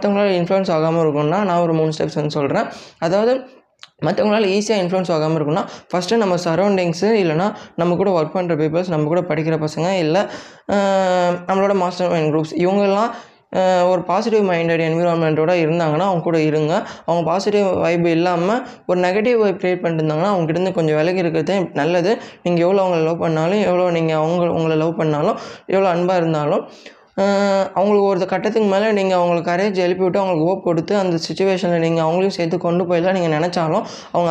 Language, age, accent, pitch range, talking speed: Tamil, 20-39, native, 165-195 Hz, 165 wpm